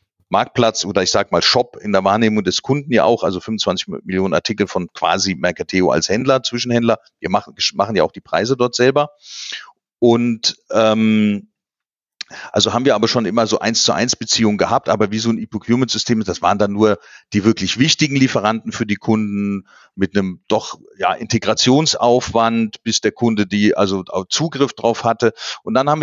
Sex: male